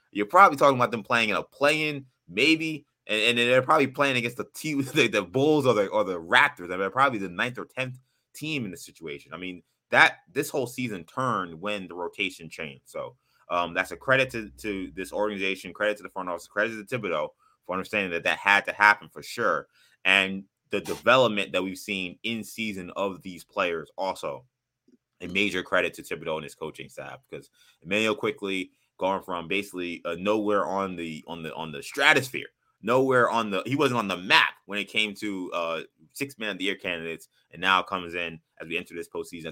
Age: 20-39